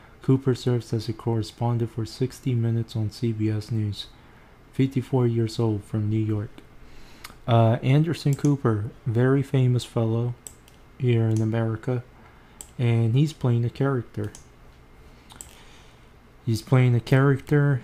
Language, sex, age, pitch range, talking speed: English, male, 20-39, 110-125 Hz, 120 wpm